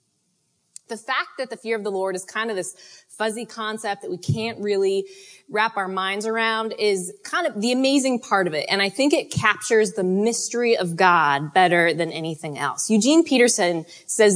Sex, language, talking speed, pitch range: female, English, 190 wpm, 175-225 Hz